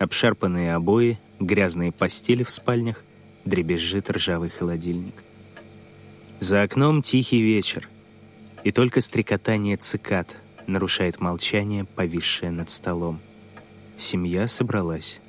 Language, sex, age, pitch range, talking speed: Russian, male, 30-49, 95-110 Hz, 95 wpm